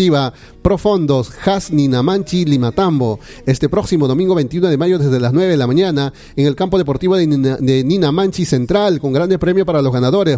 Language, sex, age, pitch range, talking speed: Spanish, male, 40-59, 135-175 Hz, 180 wpm